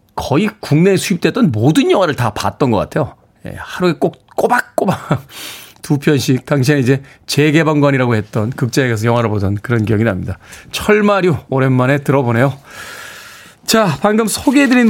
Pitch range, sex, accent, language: 125-170 Hz, male, native, Korean